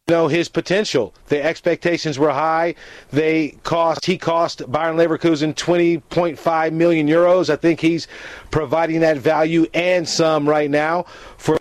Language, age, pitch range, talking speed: English, 40-59, 160-185 Hz, 140 wpm